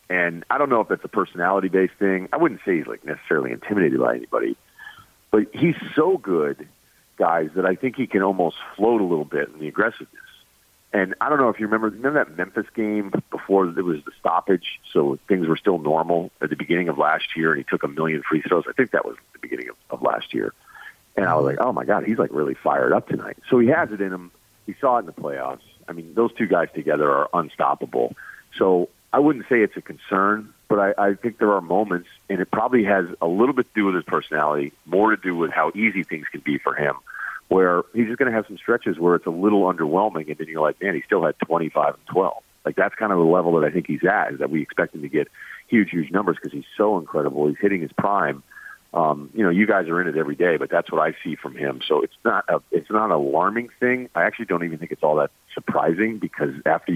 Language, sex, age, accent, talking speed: English, male, 40-59, American, 255 wpm